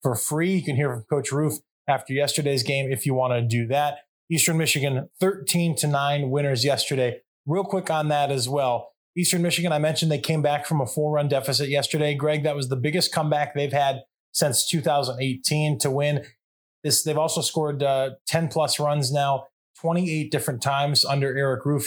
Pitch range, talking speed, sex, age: 135-155 Hz, 185 wpm, male, 20-39